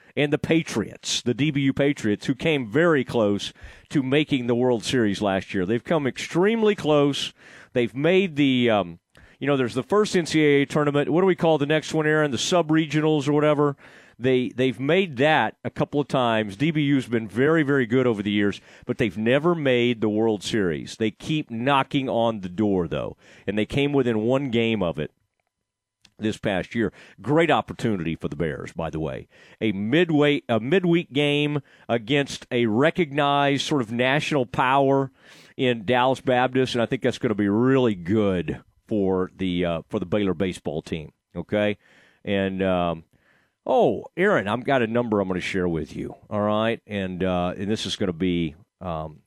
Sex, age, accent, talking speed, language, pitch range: male, 40-59, American, 185 wpm, English, 100-145 Hz